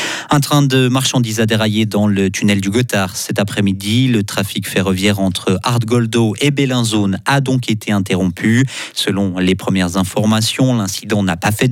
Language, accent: French, French